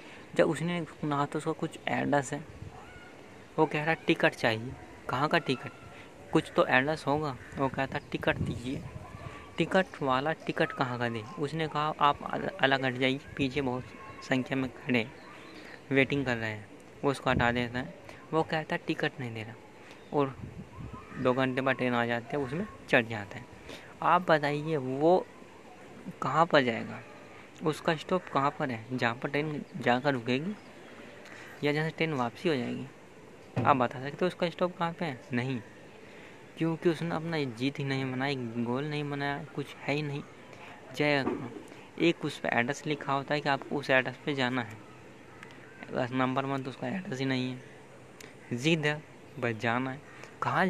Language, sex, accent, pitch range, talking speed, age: Hindi, female, native, 125-155 Hz, 170 wpm, 20-39